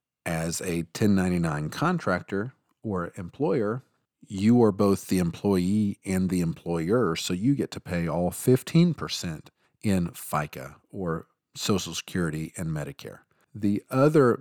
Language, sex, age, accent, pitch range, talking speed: English, male, 40-59, American, 90-110 Hz, 125 wpm